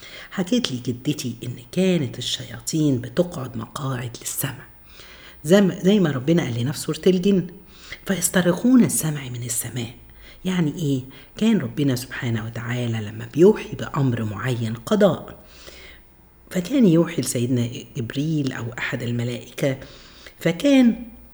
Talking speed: 105 wpm